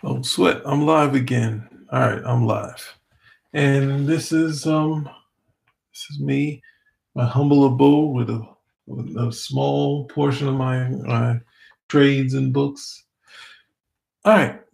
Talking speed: 135 wpm